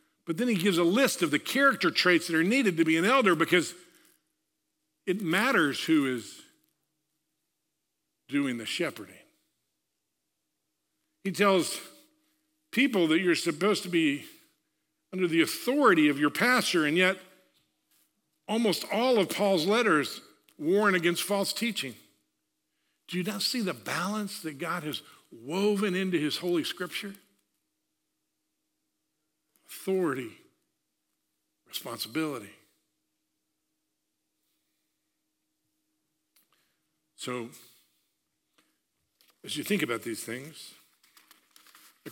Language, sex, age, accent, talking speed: English, male, 50-69, American, 105 wpm